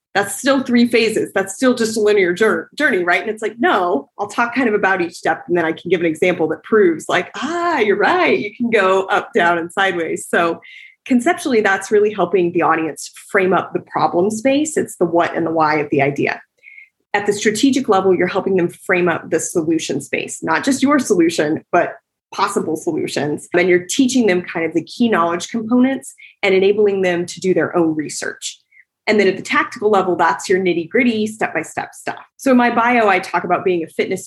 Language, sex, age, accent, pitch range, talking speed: English, female, 20-39, American, 180-250 Hz, 210 wpm